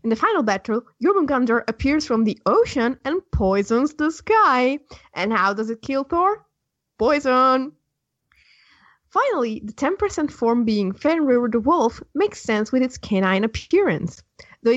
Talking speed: 140 wpm